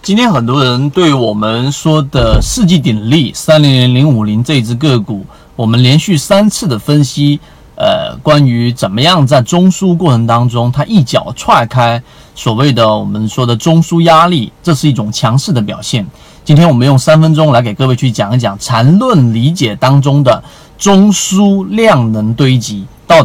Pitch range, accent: 120-170 Hz, native